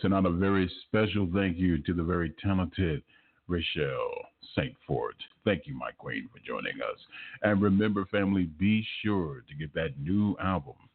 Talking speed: 170 wpm